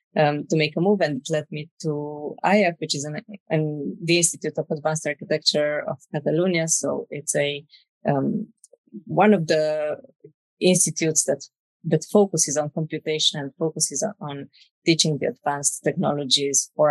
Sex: female